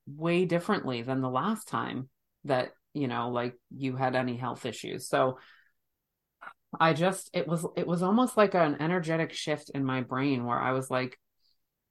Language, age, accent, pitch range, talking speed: English, 30-49, American, 130-155 Hz, 170 wpm